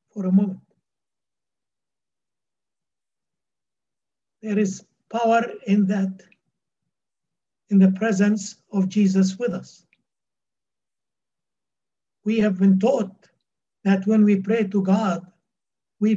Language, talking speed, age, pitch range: English, 95 wpm, 60-79, 185-220 Hz